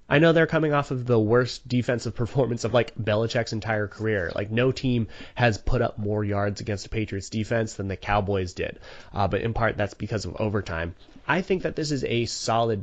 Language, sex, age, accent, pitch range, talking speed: English, male, 30-49, American, 100-120 Hz, 215 wpm